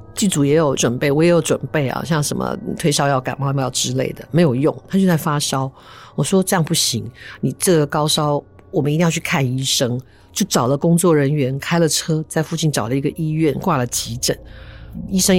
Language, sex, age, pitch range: Chinese, female, 50-69, 135-180 Hz